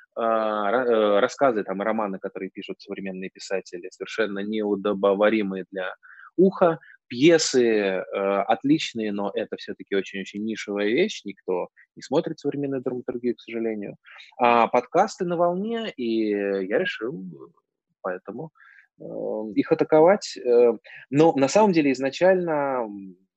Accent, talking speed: native, 110 wpm